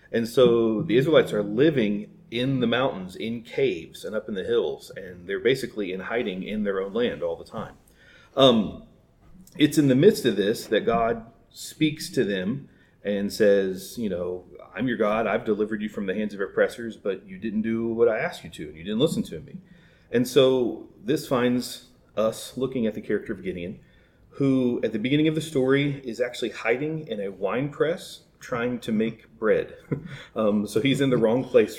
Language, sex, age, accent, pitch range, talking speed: English, male, 40-59, American, 105-170 Hz, 200 wpm